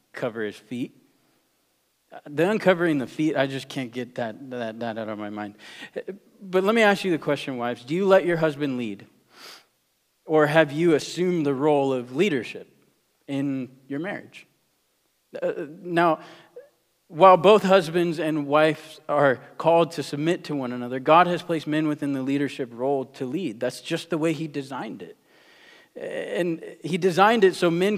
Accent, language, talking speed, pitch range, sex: American, English, 170 wpm, 140-175 Hz, male